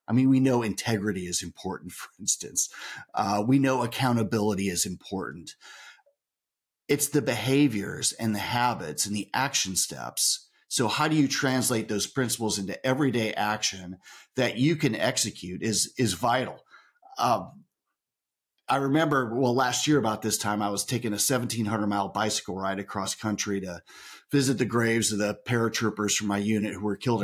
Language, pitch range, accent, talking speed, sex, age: English, 105-135 Hz, American, 165 wpm, male, 40-59